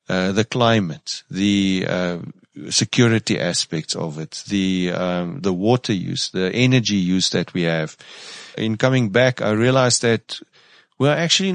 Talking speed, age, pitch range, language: 145 wpm, 40-59, 95-120 Hz, English